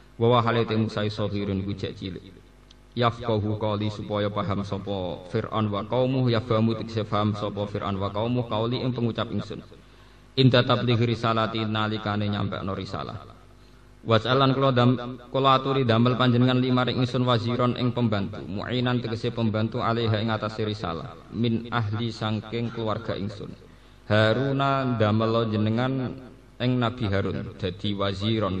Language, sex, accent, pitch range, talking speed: Indonesian, male, native, 105-125 Hz, 135 wpm